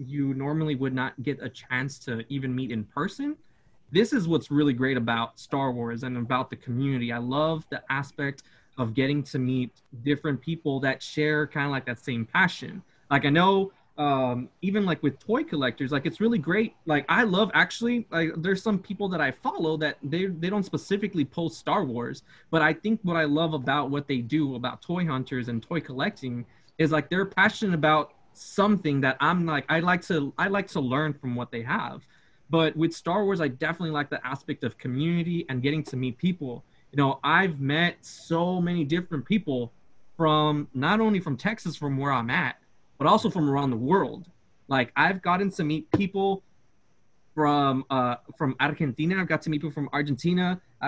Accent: American